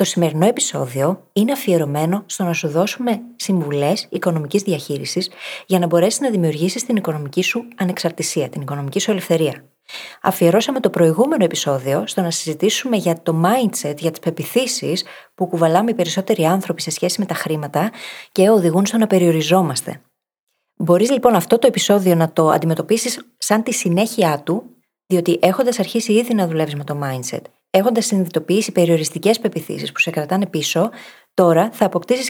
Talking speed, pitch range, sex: 160 wpm, 165-220 Hz, female